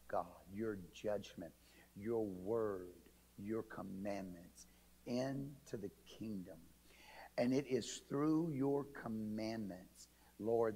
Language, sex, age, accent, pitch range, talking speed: English, male, 50-69, American, 95-120 Hz, 95 wpm